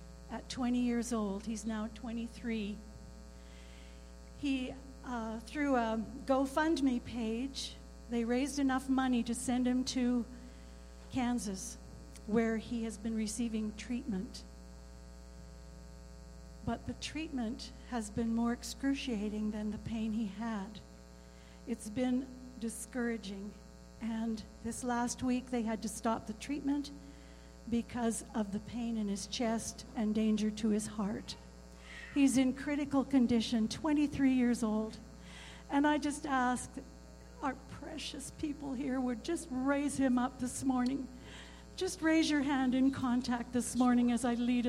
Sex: female